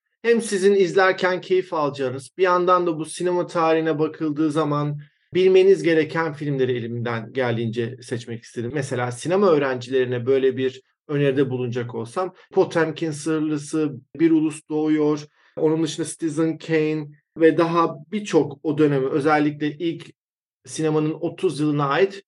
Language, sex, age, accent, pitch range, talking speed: Turkish, male, 40-59, native, 140-175 Hz, 130 wpm